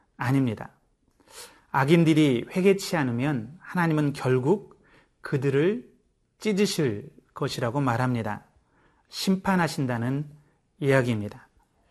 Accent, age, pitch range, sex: native, 30-49, 130-175 Hz, male